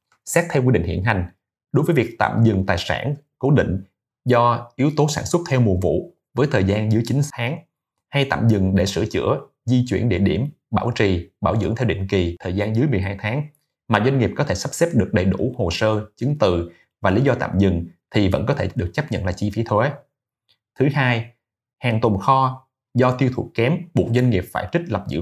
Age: 20-39